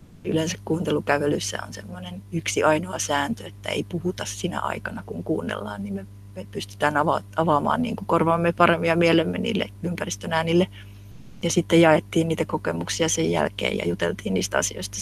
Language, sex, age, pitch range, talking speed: Finnish, female, 30-49, 100-165 Hz, 150 wpm